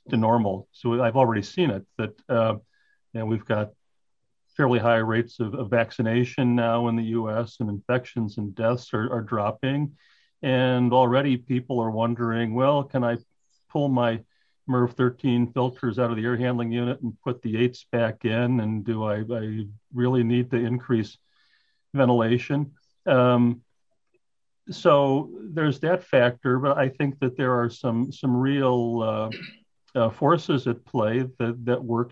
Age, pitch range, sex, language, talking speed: 40-59, 115-130 Hz, male, English, 155 wpm